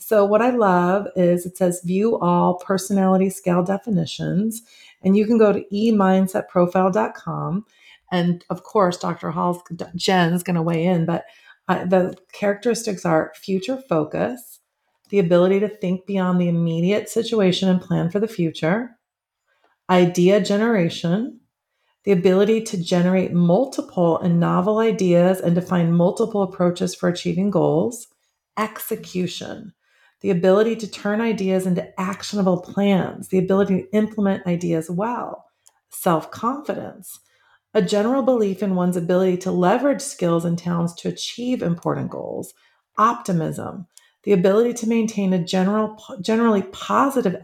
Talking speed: 135 wpm